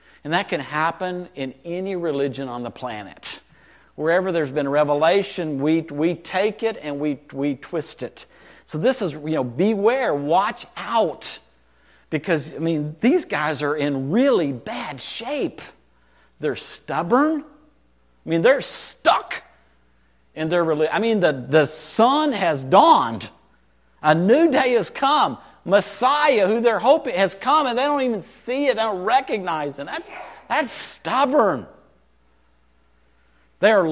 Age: 50-69